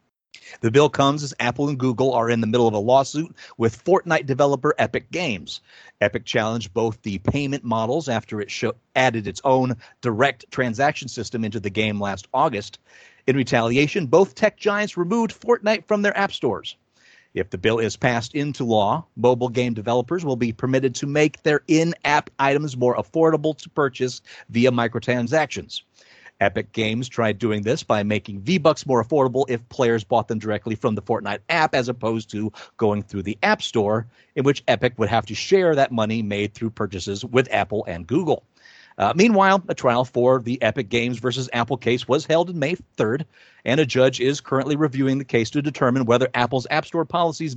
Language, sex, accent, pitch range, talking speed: English, male, American, 115-145 Hz, 185 wpm